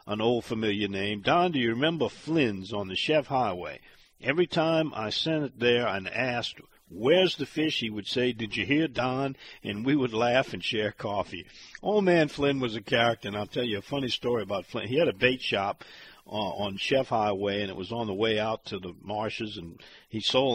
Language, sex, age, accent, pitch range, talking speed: English, male, 50-69, American, 110-145 Hz, 220 wpm